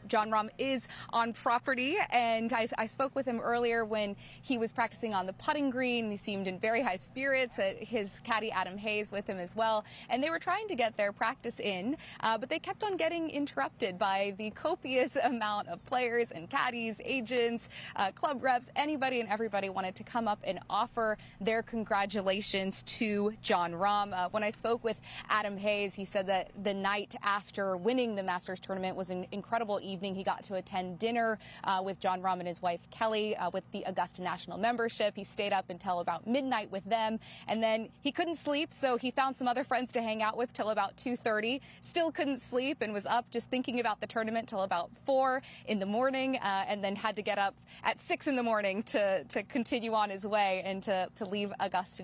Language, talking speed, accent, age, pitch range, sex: English, 210 wpm, American, 20-39, 195-245 Hz, female